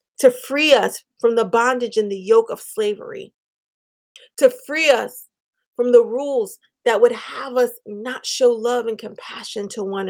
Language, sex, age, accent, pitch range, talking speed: English, female, 30-49, American, 220-315 Hz, 165 wpm